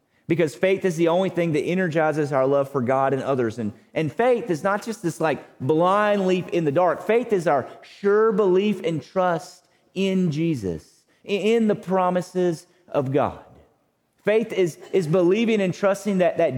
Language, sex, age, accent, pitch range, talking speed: English, male, 30-49, American, 170-215 Hz, 175 wpm